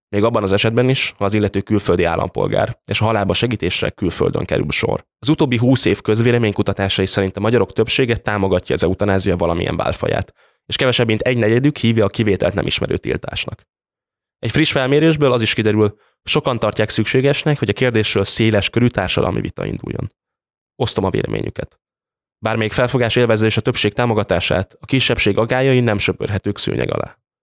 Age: 10-29